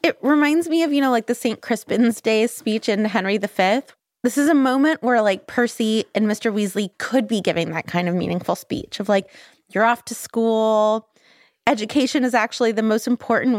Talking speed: 200 wpm